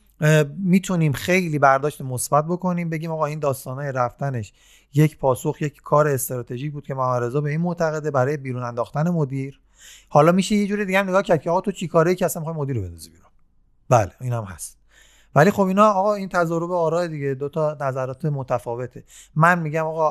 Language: Persian